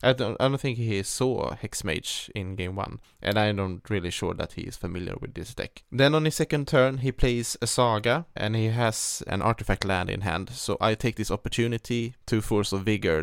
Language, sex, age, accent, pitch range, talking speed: English, male, 20-39, Norwegian, 95-120 Hz, 220 wpm